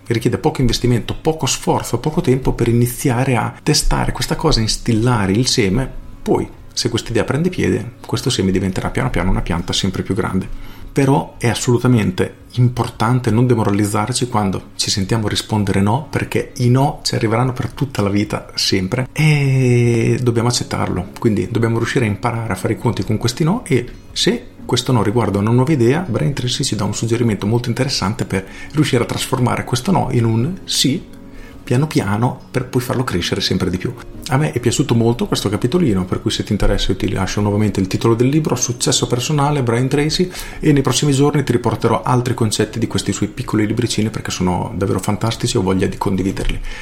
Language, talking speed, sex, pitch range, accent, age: Italian, 190 wpm, male, 100-125 Hz, native, 40-59